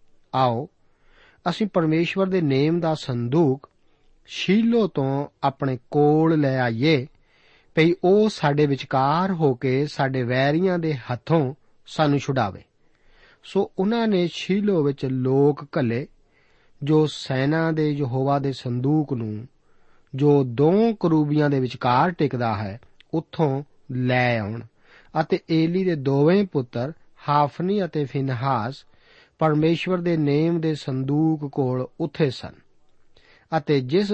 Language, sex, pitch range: Punjabi, male, 130-170 Hz